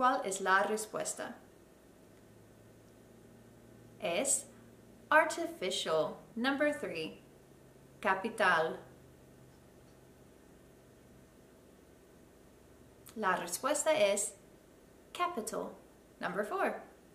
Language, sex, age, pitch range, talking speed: Spanish, female, 20-39, 160-255 Hz, 55 wpm